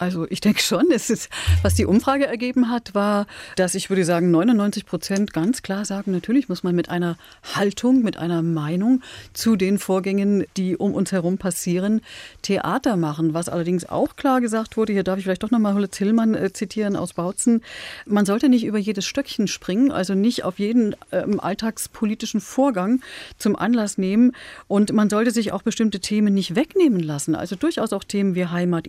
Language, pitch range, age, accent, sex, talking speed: German, 180-220 Hz, 40-59, German, female, 190 wpm